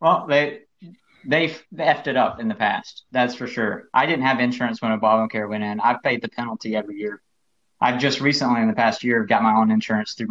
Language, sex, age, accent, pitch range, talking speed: English, male, 30-49, American, 110-140 Hz, 225 wpm